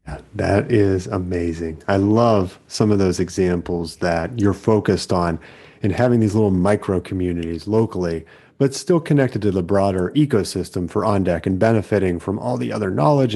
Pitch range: 90-115 Hz